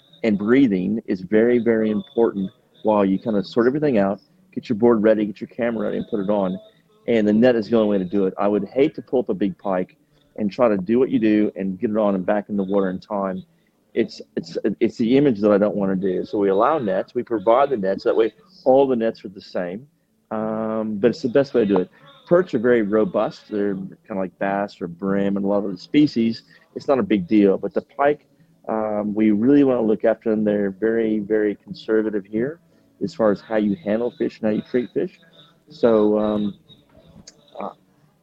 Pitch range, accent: 100-120 Hz, American